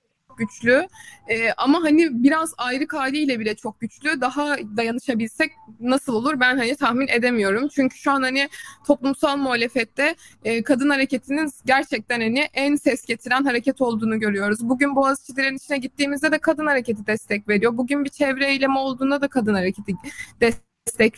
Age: 20-39